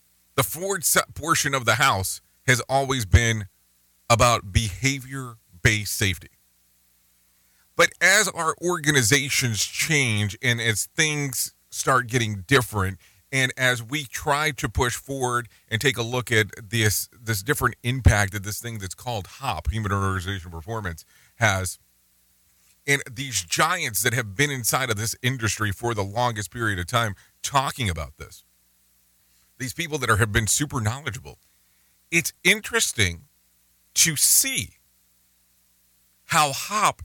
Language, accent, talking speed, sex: English, American, 130 wpm, male